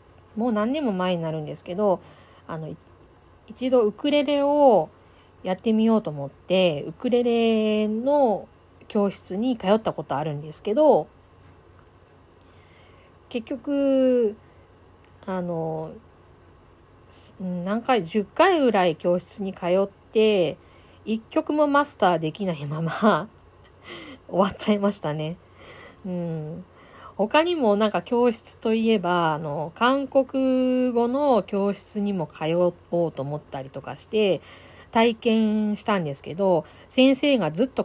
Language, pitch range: Japanese, 150-230 Hz